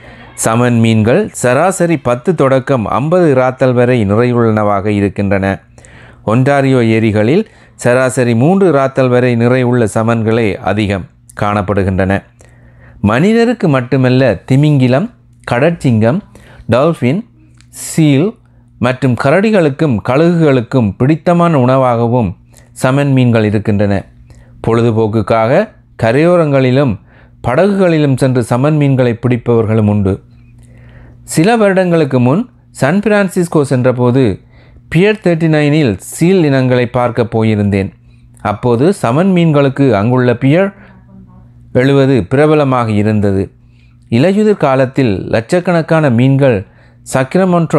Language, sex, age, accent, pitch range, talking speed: Tamil, male, 30-49, native, 110-145 Hz, 85 wpm